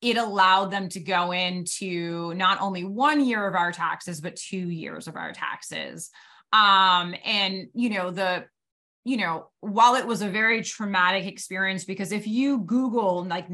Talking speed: 170 wpm